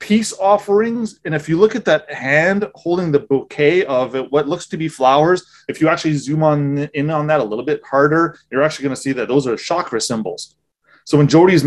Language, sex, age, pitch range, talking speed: English, male, 30-49, 135-175 Hz, 220 wpm